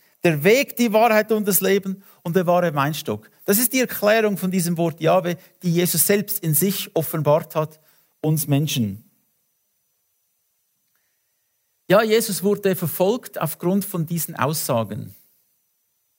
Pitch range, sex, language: 165-215 Hz, male, English